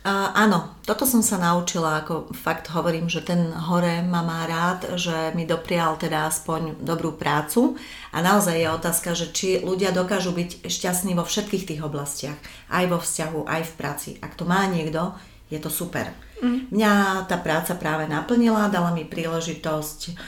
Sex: female